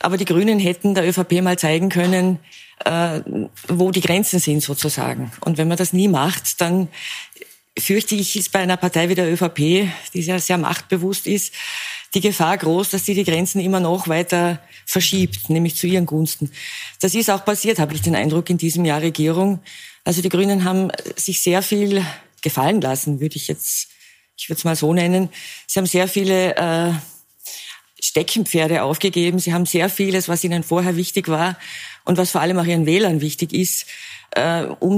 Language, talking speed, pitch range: German, 185 wpm, 165-195 Hz